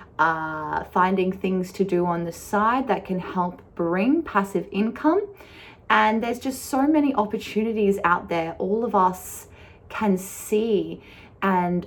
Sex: female